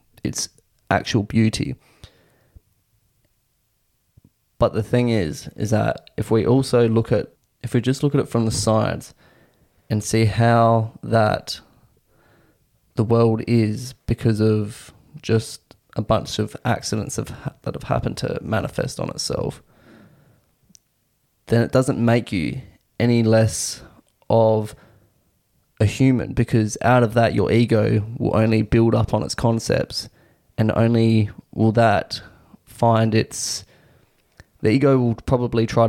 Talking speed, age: 135 wpm, 20-39